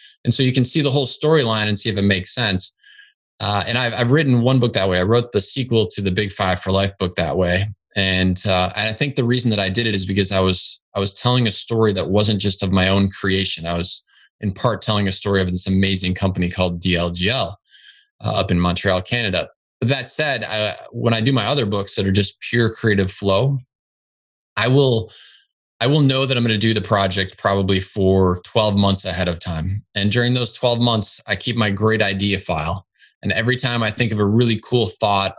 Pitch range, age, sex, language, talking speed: 95-120 Hz, 20-39, male, English, 225 wpm